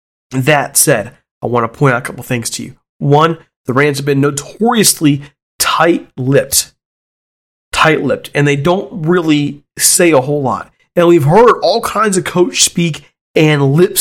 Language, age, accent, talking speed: English, 30-49, American, 165 wpm